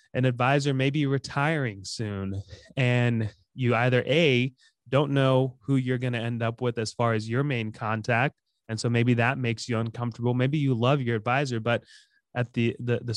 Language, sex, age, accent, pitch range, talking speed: English, male, 20-39, American, 115-130 Hz, 190 wpm